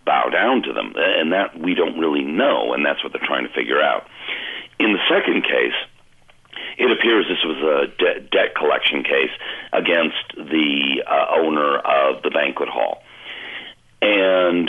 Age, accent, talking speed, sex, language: 60-79, American, 155 wpm, male, English